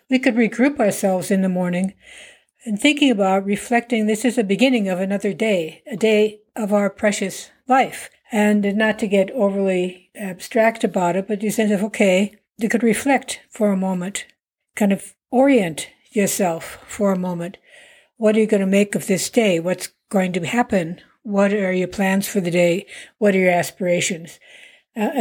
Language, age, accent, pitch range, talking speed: English, 60-79, American, 190-235 Hz, 180 wpm